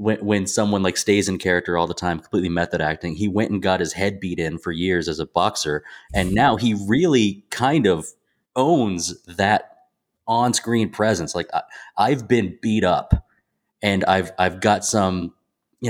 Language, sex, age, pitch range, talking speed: English, male, 20-39, 90-110 Hz, 185 wpm